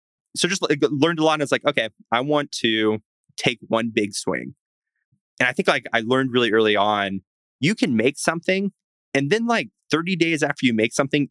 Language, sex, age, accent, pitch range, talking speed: English, male, 20-39, American, 105-135 Hz, 200 wpm